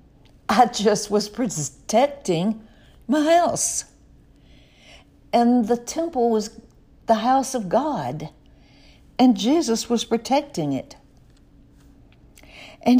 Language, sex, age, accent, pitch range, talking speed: English, female, 60-79, American, 165-235 Hz, 90 wpm